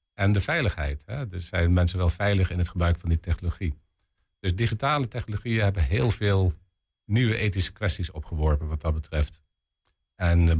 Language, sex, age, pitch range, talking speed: Dutch, male, 50-69, 85-105 Hz, 160 wpm